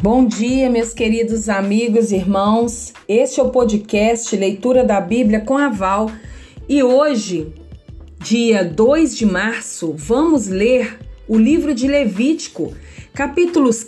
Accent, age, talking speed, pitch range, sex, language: Brazilian, 40-59, 125 wpm, 210-285 Hz, female, Portuguese